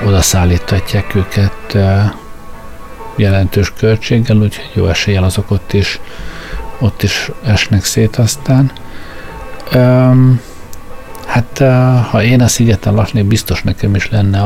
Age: 50-69